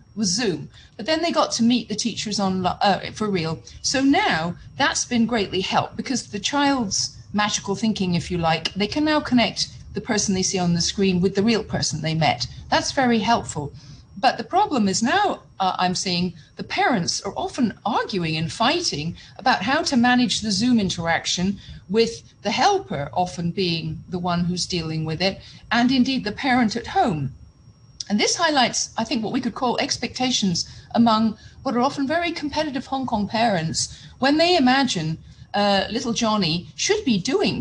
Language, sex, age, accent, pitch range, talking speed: English, female, 40-59, British, 180-255 Hz, 185 wpm